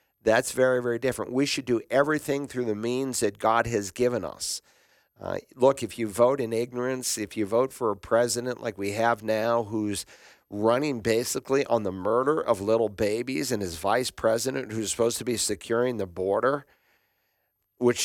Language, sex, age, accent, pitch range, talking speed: English, male, 50-69, American, 110-130 Hz, 180 wpm